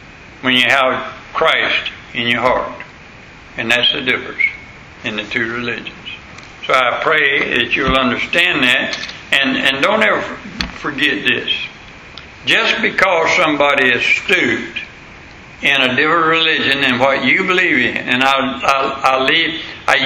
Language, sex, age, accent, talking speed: English, male, 60-79, American, 145 wpm